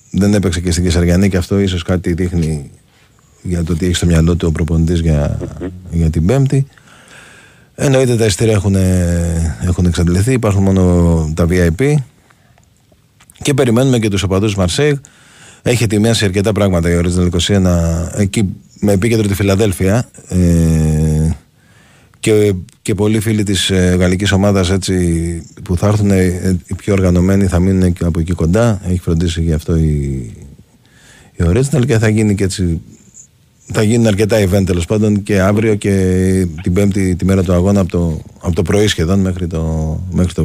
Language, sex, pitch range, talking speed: Greek, male, 90-110 Hz, 160 wpm